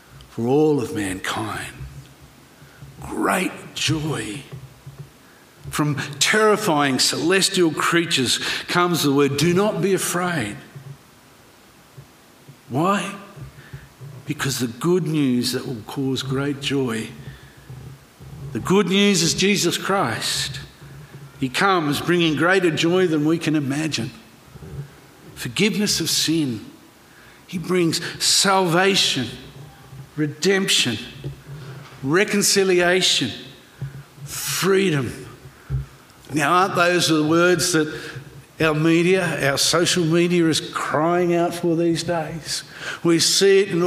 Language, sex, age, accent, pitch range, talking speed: English, male, 50-69, Australian, 135-175 Hz, 100 wpm